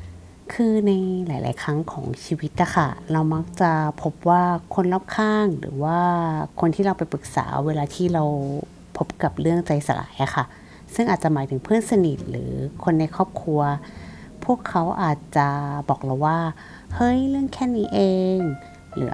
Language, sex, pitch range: Thai, female, 145-190 Hz